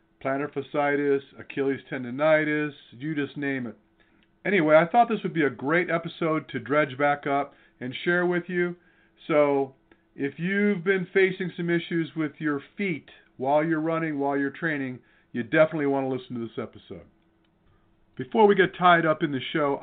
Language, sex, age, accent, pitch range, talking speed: English, male, 50-69, American, 140-180 Hz, 175 wpm